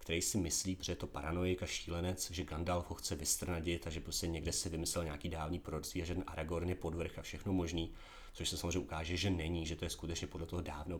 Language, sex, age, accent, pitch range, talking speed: Czech, male, 30-49, native, 85-100 Hz, 245 wpm